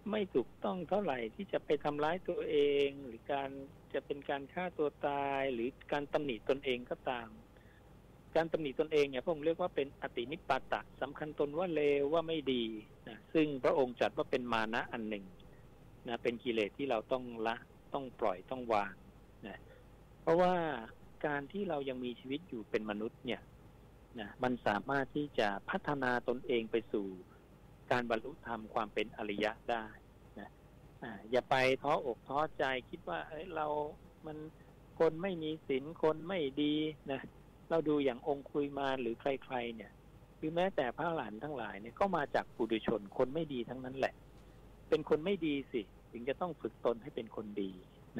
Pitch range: 120-150 Hz